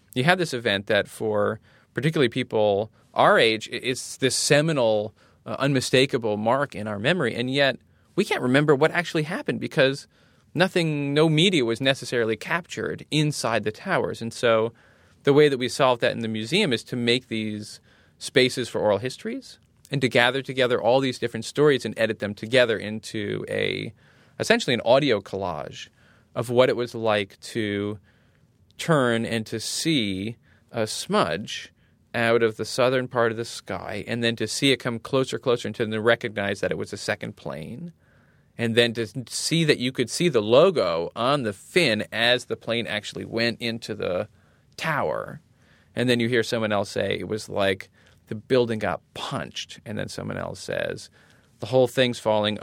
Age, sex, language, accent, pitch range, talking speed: 20-39, male, English, American, 110-130 Hz, 175 wpm